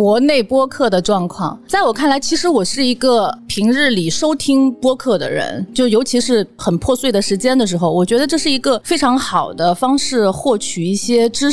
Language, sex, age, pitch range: Chinese, female, 30-49, 190-260 Hz